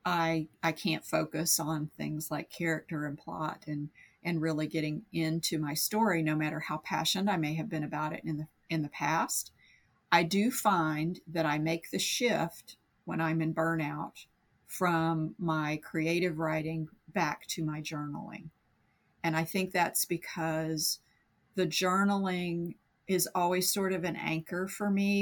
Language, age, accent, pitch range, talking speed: English, 50-69, American, 155-180 Hz, 160 wpm